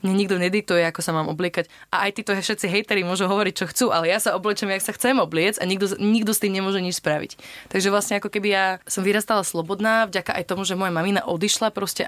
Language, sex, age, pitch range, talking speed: Slovak, female, 20-39, 175-205 Hz, 240 wpm